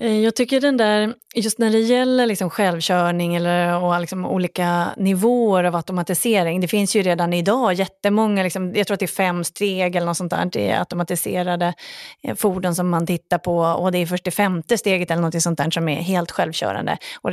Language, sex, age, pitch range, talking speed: Swedish, female, 30-49, 175-215 Hz, 195 wpm